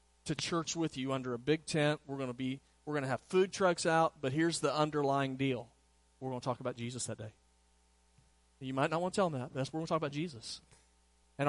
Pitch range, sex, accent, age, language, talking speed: 120-155 Hz, male, American, 40-59, English, 260 wpm